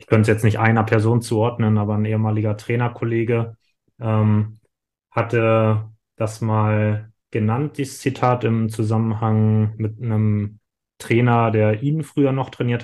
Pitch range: 110-120 Hz